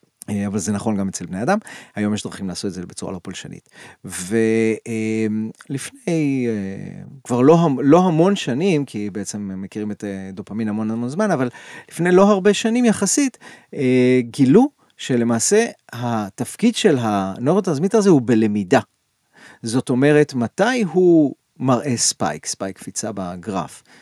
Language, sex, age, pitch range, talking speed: Hebrew, male, 30-49, 105-165 Hz, 130 wpm